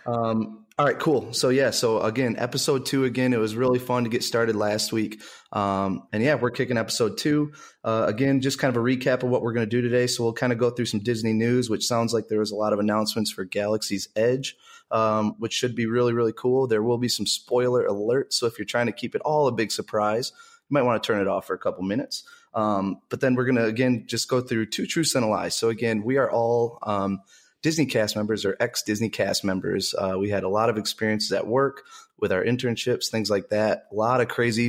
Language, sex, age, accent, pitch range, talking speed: English, male, 20-39, American, 105-125 Hz, 250 wpm